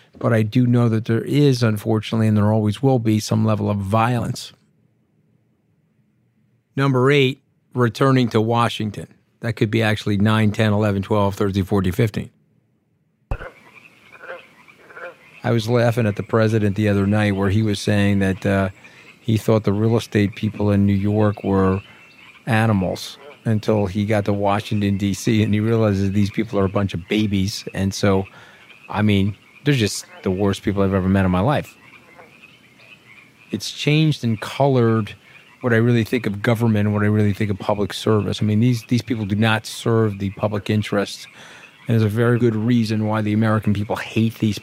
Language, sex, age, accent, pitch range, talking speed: English, male, 40-59, American, 105-115 Hz, 175 wpm